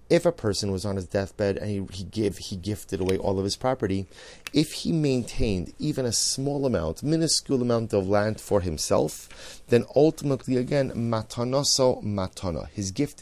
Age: 30-49